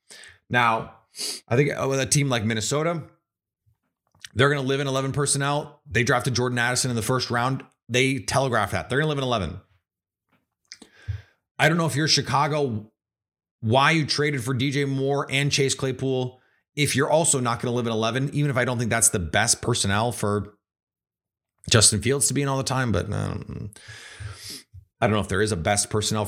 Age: 30-49